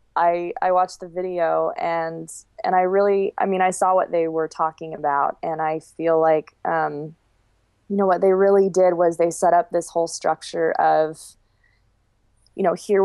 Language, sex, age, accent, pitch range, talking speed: English, female, 20-39, American, 155-185 Hz, 185 wpm